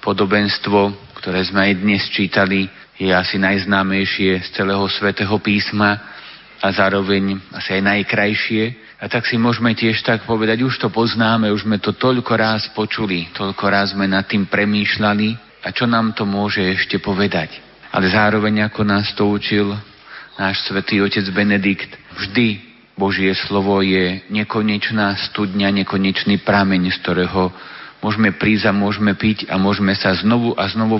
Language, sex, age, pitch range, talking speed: Slovak, male, 30-49, 95-105 Hz, 150 wpm